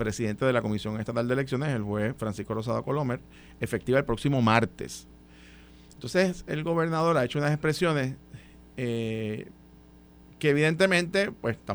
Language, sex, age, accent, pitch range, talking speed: Spanish, male, 50-69, Venezuelan, 115-160 Hz, 145 wpm